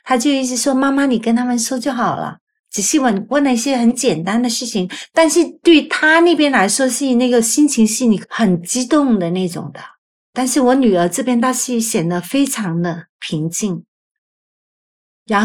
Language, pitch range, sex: Chinese, 190-250 Hz, female